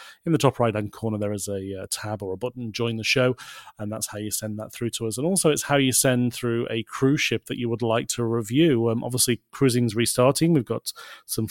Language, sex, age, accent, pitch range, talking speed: English, male, 30-49, British, 110-130 Hz, 255 wpm